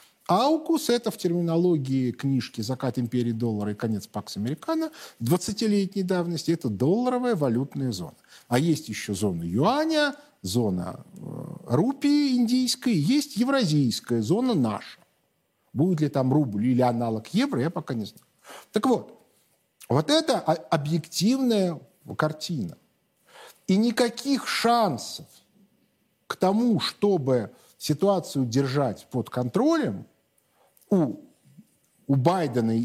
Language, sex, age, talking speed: Russian, male, 50-69, 115 wpm